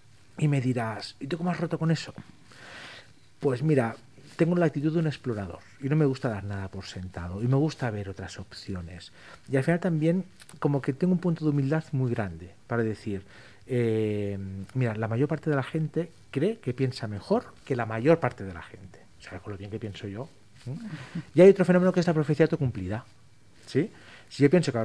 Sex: male